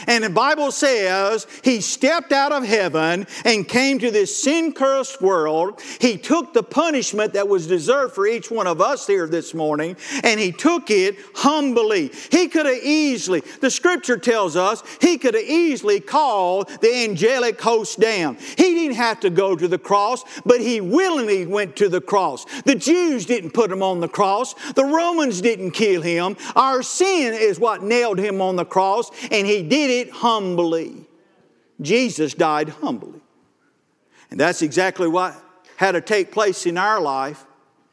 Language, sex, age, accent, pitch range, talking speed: English, male, 50-69, American, 185-270 Hz, 170 wpm